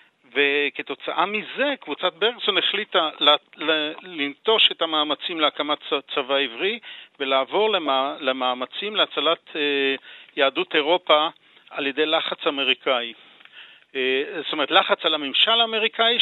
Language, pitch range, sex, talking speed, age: Hebrew, 150-185 Hz, male, 95 wpm, 50-69